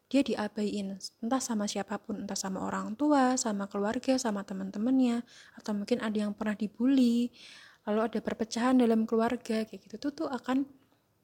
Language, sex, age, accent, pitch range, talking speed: Indonesian, female, 20-39, native, 205-240 Hz, 160 wpm